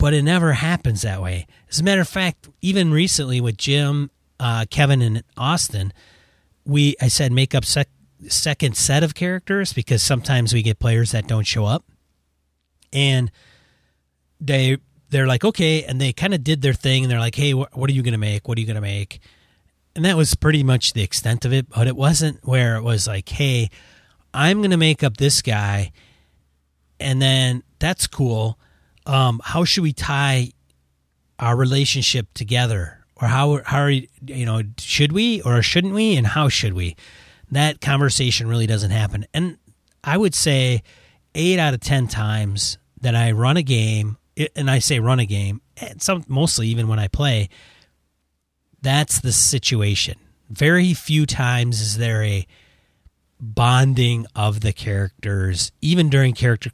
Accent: American